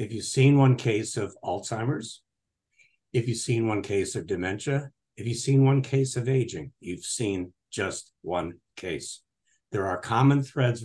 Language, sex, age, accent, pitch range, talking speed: English, male, 60-79, American, 105-130 Hz, 165 wpm